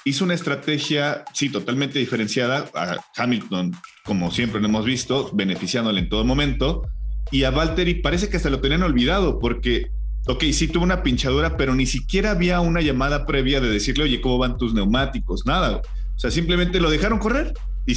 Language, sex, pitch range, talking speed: Spanish, male, 115-155 Hz, 180 wpm